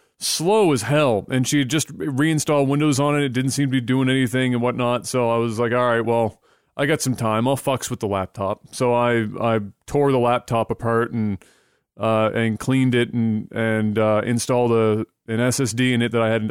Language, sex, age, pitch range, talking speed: English, male, 30-49, 115-140 Hz, 215 wpm